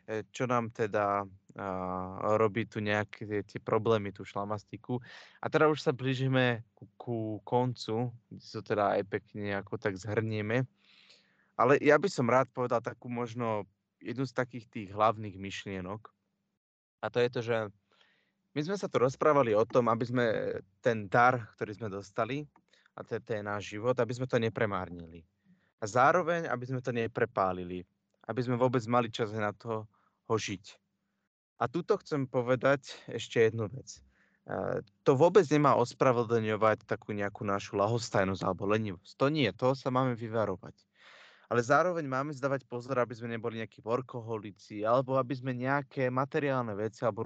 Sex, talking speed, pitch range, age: male, 155 wpm, 105-130 Hz, 20-39